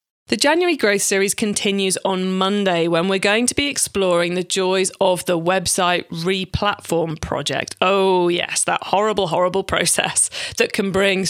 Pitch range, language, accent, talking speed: 175-230 Hz, English, British, 155 wpm